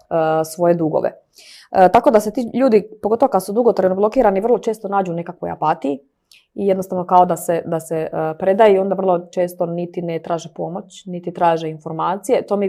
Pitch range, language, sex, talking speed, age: 165-190 Hz, Croatian, female, 190 wpm, 20-39